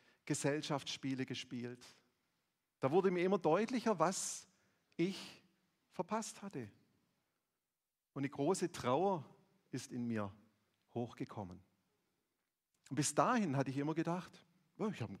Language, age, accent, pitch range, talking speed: German, 40-59, German, 125-175 Hz, 120 wpm